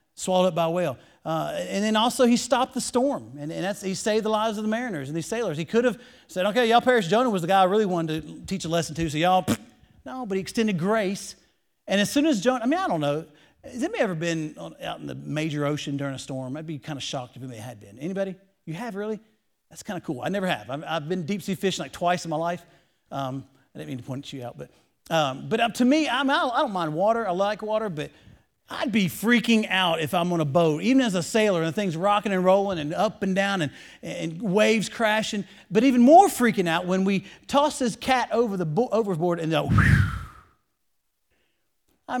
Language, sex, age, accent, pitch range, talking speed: English, male, 40-59, American, 155-215 Hz, 245 wpm